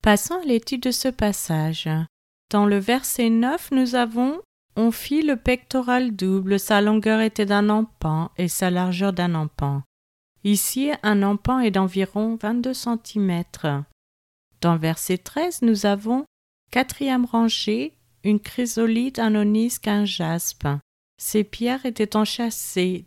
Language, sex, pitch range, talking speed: French, female, 180-240 Hz, 140 wpm